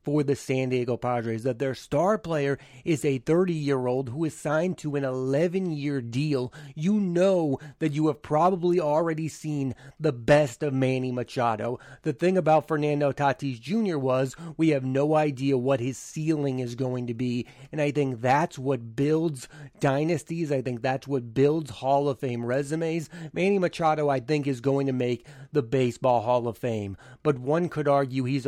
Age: 30-49